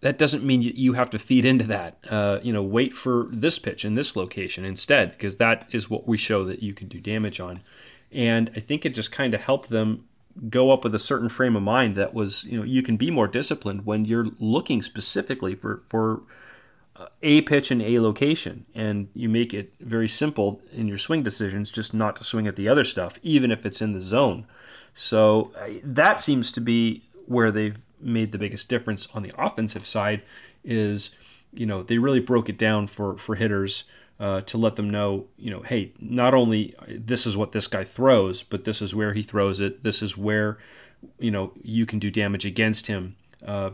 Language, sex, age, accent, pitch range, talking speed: English, male, 30-49, American, 100-120 Hz, 210 wpm